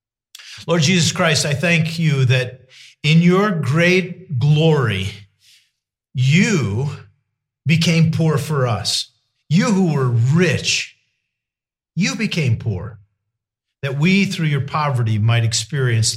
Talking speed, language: 110 wpm, English